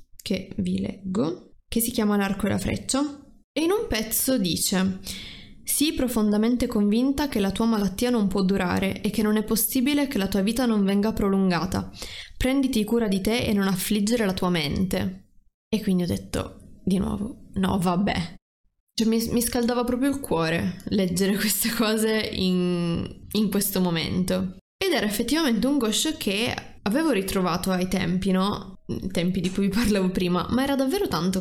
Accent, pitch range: native, 185-235 Hz